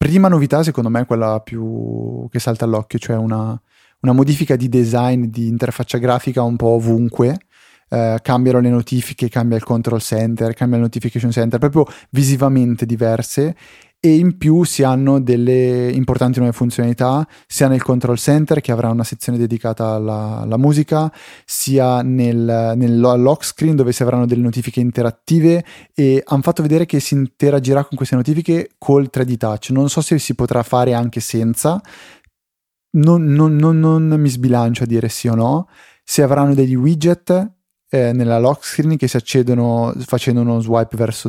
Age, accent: 30-49, native